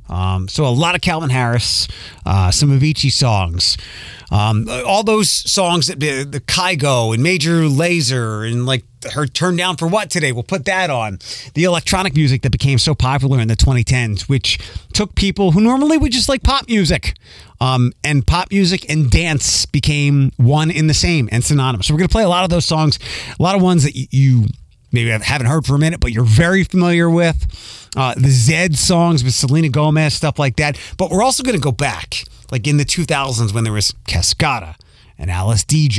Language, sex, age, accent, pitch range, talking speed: English, male, 30-49, American, 115-170 Hz, 205 wpm